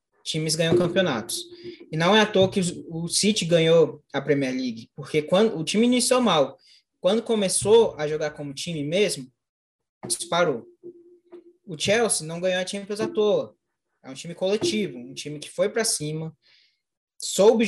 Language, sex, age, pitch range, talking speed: Portuguese, male, 20-39, 160-220 Hz, 165 wpm